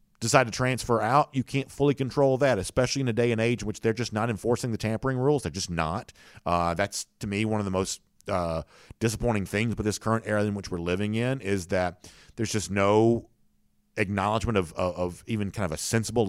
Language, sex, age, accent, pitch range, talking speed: English, male, 50-69, American, 100-135 Hz, 225 wpm